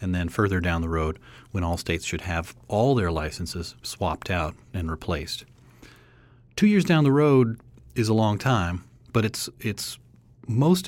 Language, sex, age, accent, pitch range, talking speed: English, male, 40-59, American, 85-120 Hz, 170 wpm